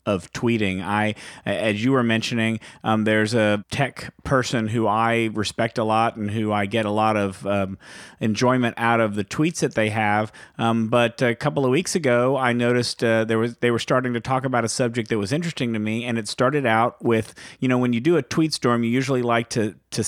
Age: 40-59